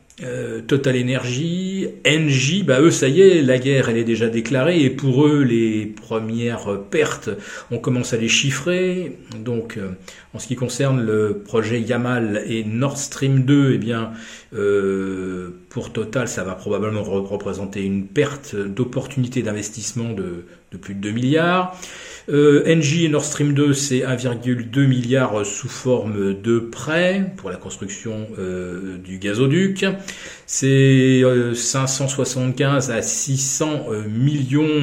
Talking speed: 140 wpm